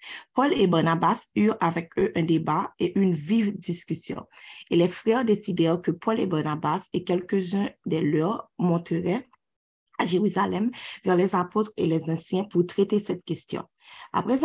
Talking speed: 160 wpm